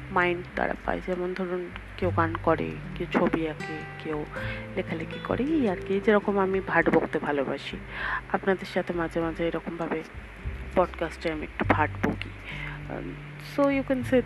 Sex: female